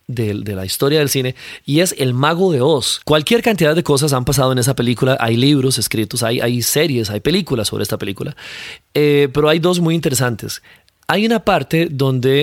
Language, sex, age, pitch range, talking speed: Spanish, male, 30-49, 125-160 Hz, 205 wpm